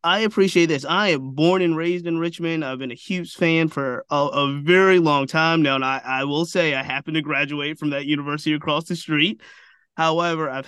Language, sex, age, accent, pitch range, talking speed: English, male, 20-39, American, 135-180 Hz, 220 wpm